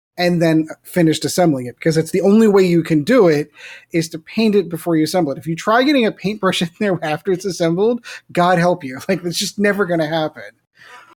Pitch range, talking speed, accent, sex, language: 150-185 Hz, 230 wpm, American, male, English